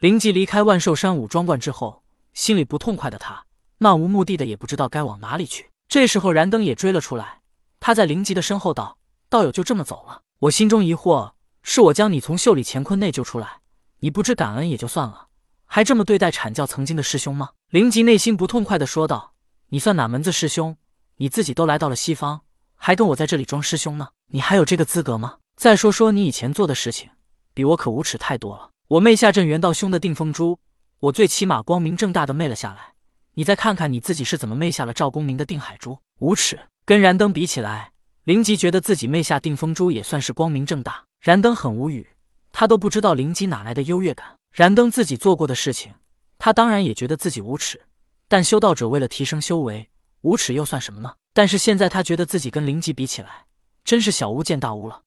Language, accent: Chinese, native